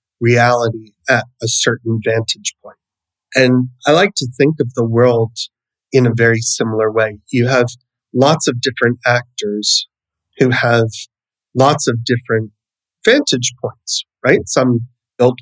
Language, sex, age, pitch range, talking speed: English, male, 30-49, 115-130 Hz, 135 wpm